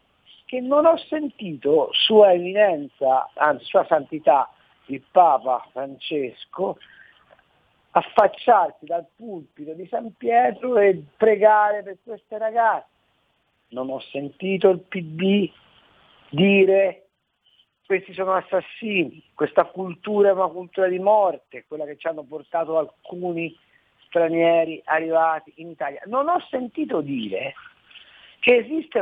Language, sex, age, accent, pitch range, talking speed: Italian, male, 50-69, native, 160-230 Hz, 110 wpm